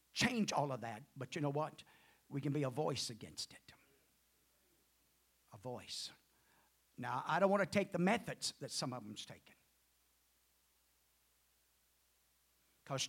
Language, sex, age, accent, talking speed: English, male, 50-69, American, 140 wpm